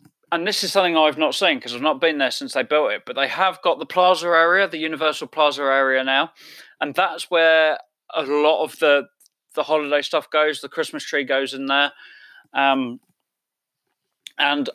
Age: 20-39